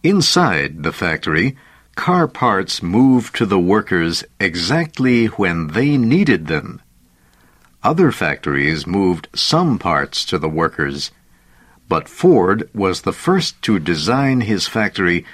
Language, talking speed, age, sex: English, 120 wpm, 60-79, male